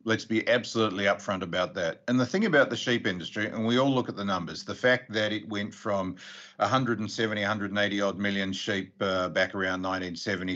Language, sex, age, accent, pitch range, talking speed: English, male, 50-69, Australian, 100-125 Hz, 200 wpm